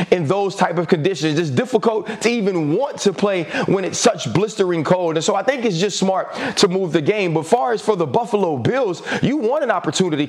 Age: 30-49